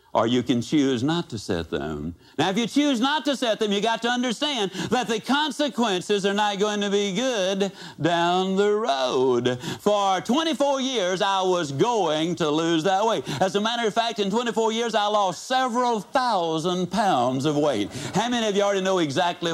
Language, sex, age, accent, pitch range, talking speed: English, male, 60-79, American, 170-235 Hz, 195 wpm